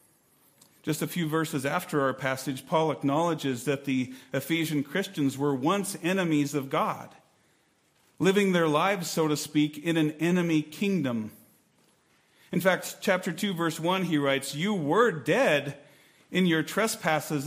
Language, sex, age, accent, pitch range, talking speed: English, male, 40-59, American, 145-190 Hz, 145 wpm